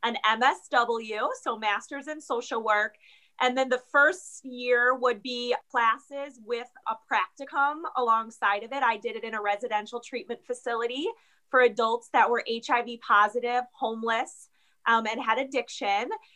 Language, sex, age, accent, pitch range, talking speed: English, female, 30-49, American, 225-280 Hz, 145 wpm